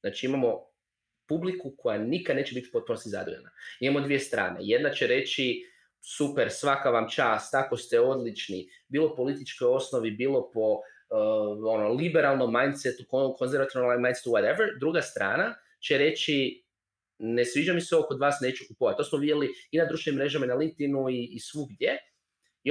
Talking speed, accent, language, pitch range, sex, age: 160 wpm, native, Croatian, 125-175 Hz, male, 20-39